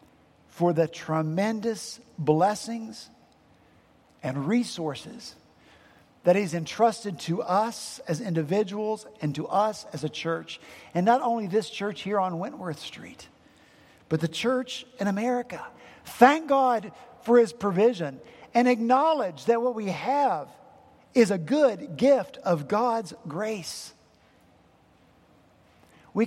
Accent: American